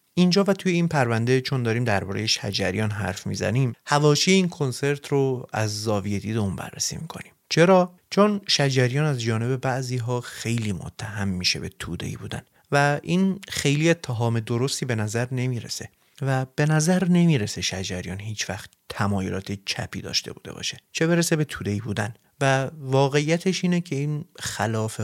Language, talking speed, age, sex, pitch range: Persian, 160 wpm, 30-49, male, 110-150 Hz